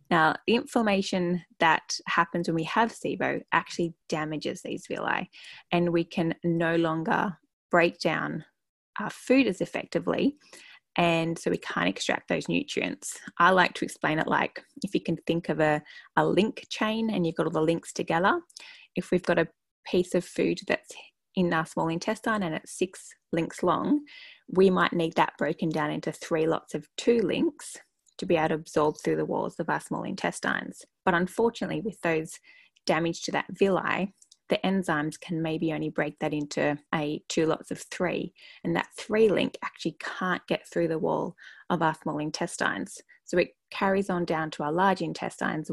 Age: 10-29